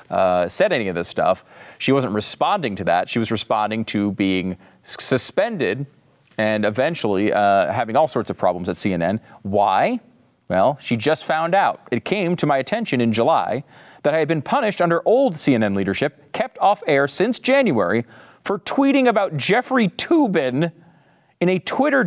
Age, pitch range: 40-59, 120-175 Hz